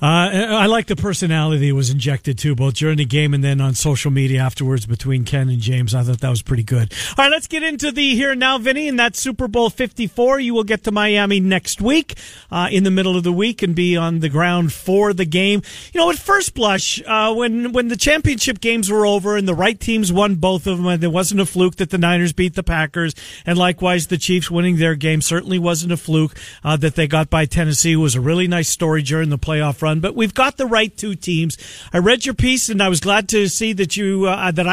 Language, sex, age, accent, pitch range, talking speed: English, male, 40-59, American, 155-205 Hz, 250 wpm